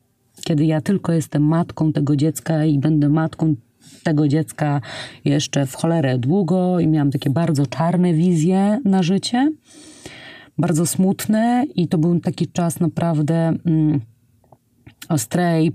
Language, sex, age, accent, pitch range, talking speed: Polish, female, 30-49, native, 145-195 Hz, 125 wpm